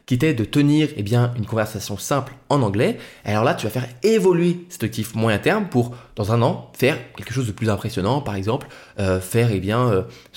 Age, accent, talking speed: 20-39, French, 225 wpm